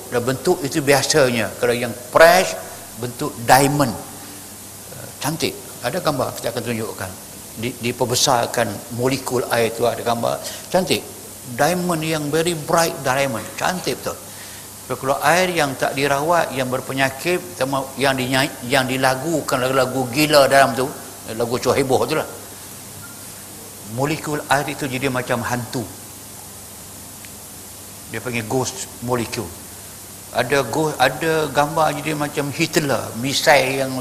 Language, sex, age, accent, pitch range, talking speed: Malayalam, male, 60-79, Indonesian, 110-140 Hz, 120 wpm